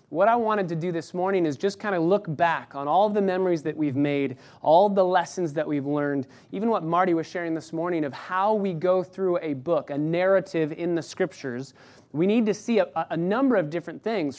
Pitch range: 155-190 Hz